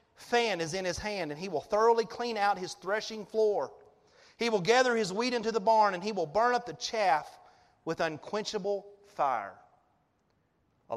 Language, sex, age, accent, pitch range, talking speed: English, male, 30-49, American, 125-175 Hz, 180 wpm